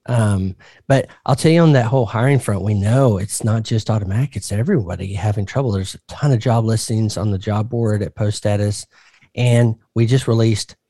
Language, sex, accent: English, male, American